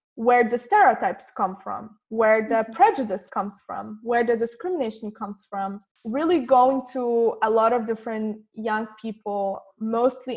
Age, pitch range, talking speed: 20-39, 205-240 Hz, 145 wpm